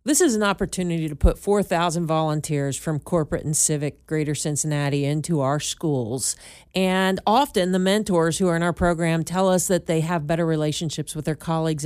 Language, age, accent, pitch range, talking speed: English, 40-59, American, 160-200 Hz, 180 wpm